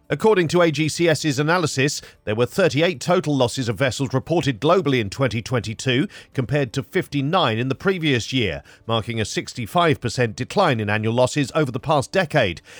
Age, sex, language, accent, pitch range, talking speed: 40-59, male, English, British, 120-155 Hz, 155 wpm